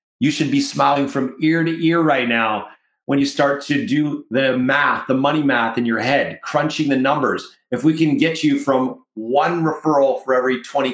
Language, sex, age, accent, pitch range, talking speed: English, male, 40-59, American, 130-170 Hz, 205 wpm